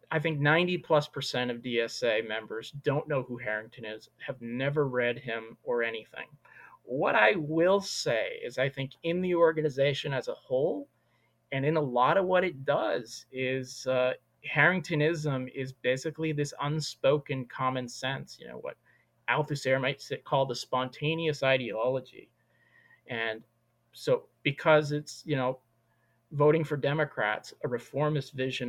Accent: American